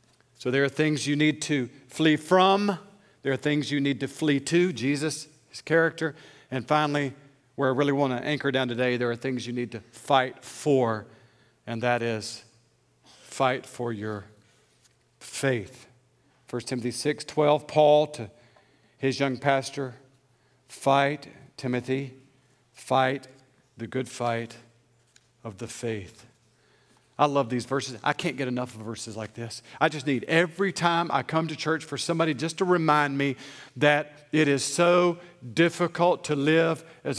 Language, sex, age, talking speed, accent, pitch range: English, male, 50-69, 160 wpm, American, 130-170 Hz